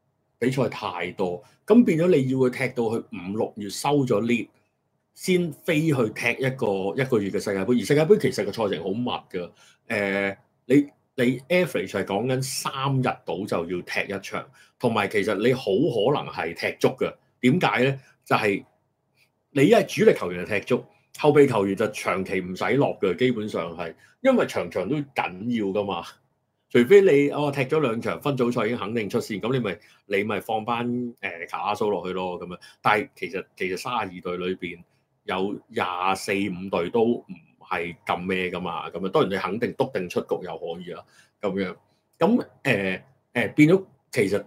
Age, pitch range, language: 30-49, 95-140 Hz, Chinese